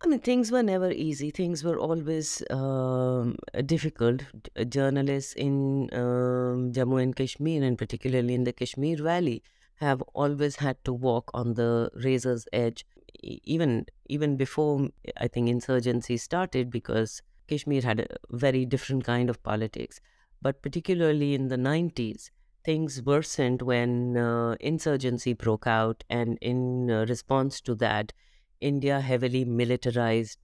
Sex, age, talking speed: female, 30-49, 135 wpm